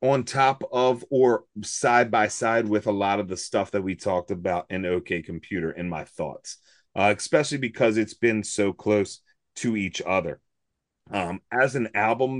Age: 30-49